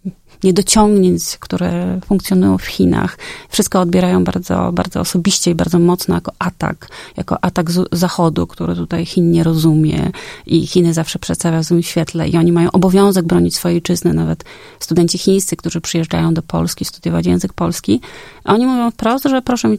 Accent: native